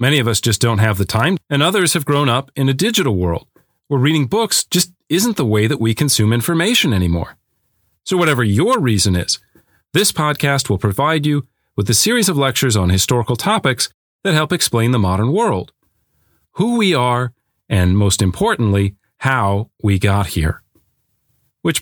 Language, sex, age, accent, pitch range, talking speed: English, male, 40-59, American, 105-150 Hz, 175 wpm